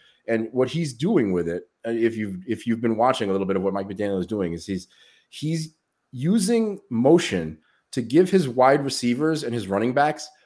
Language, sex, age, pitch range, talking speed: English, male, 30-49, 110-160 Hz, 200 wpm